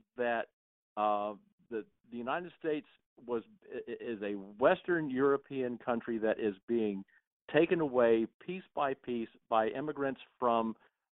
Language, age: English, 50-69